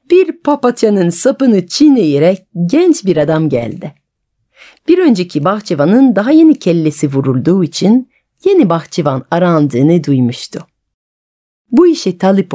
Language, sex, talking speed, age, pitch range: Turkish, female, 110 wpm, 40-59, 150-245 Hz